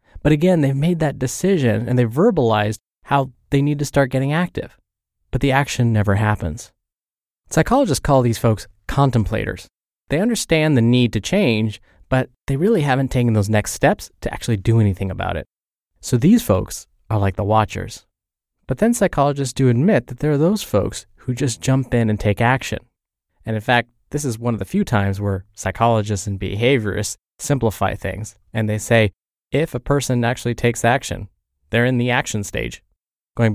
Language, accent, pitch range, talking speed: English, American, 105-135 Hz, 180 wpm